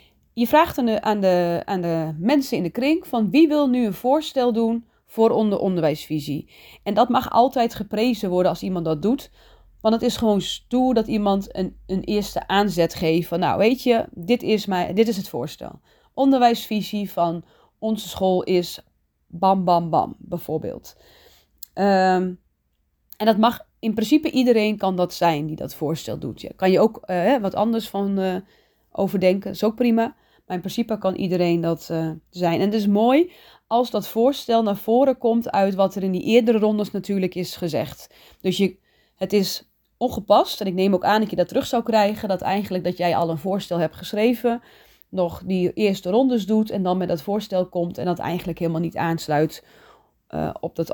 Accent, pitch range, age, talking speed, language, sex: Dutch, 180-230 Hz, 30-49, 190 wpm, Dutch, female